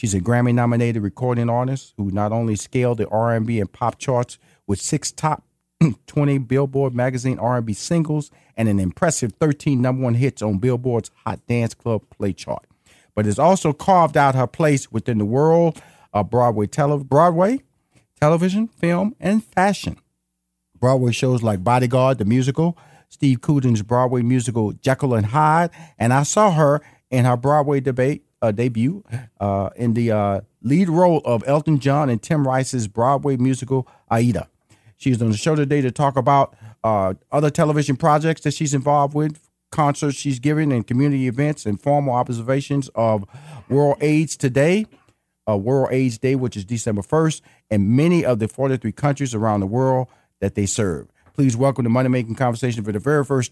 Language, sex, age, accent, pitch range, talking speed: English, male, 40-59, American, 115-145 Hz, 170 wpm